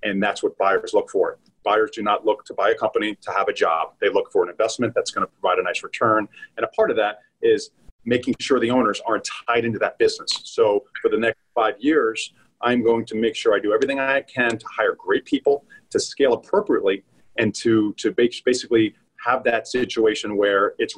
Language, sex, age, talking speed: English, male, 40-59, 220 wpm